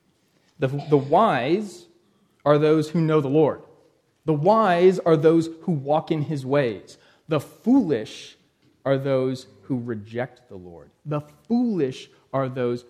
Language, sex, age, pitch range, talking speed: English, male, 30-49, 130-170 Hz, 140 wpm